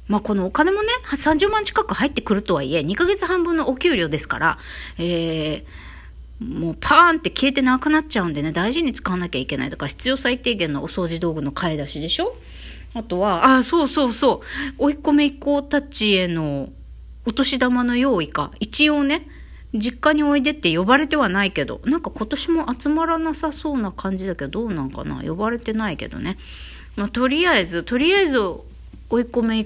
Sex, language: female, Japanese